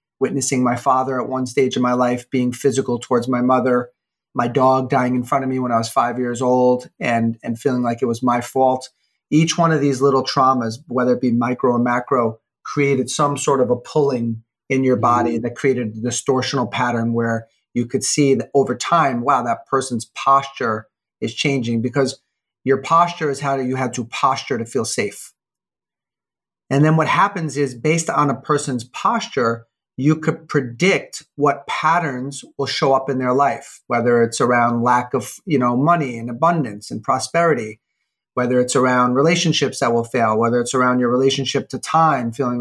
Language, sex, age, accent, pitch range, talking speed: English, male, 30-49, American, 120-140 Hz, 190 wpm